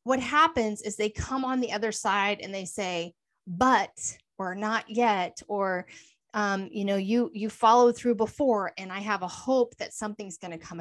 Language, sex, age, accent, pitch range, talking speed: English, female, 30-49, American, 195-240 Hz, 195 wpm